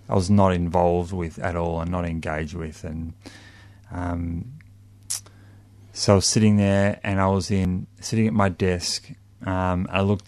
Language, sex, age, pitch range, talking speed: English, male, 30-49, 90-100 Hz, 170 wpm